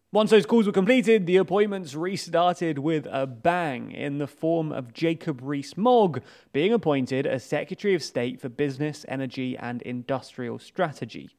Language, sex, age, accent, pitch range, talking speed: English, male, 30-49, British, 140-195 Hz, 155 wpm